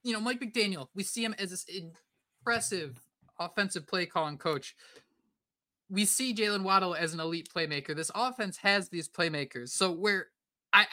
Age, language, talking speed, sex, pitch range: 20-39, English, 165 wpm, male, 155-195 Hz